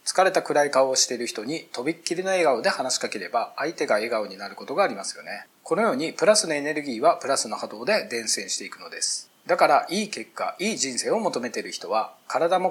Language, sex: Japanese, male